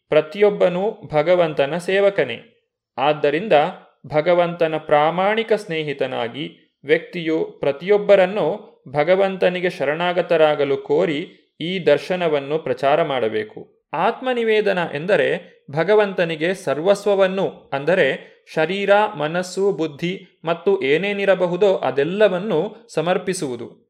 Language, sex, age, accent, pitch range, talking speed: Kannada, male, 30-49, native, 155-205 Hz, 70 wpm